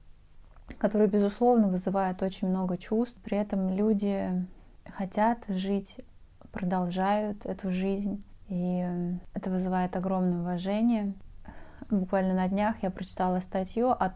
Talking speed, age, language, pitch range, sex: 110 wpm, 20-39, Russian, 180-205 Hz, female